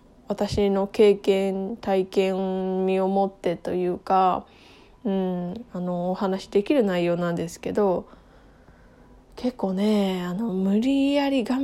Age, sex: 20-39, female